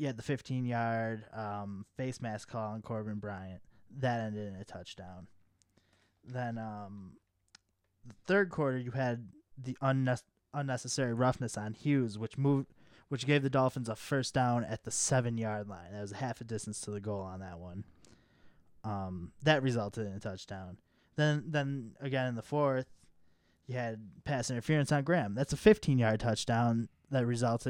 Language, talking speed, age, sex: English, 165 wpm, 20-39, male